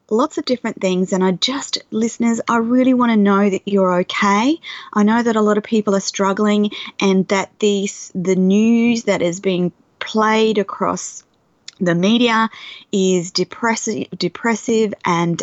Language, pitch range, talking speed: English, 185-220 Hz, 155 wpm